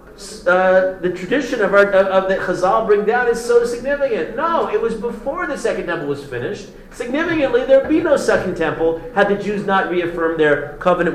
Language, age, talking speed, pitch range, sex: English, 40-59, 190 wpm, 135-230 Hz, male